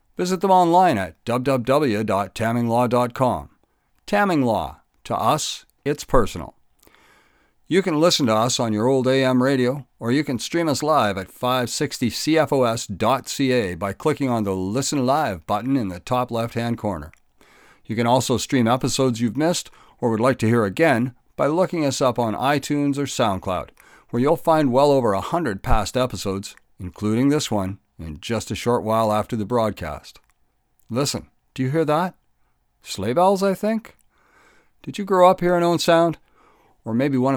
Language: English